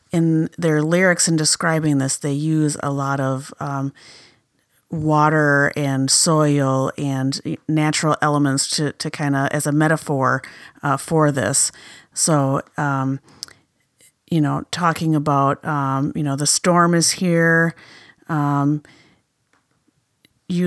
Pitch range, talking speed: 140-160 Hz, 120 wpm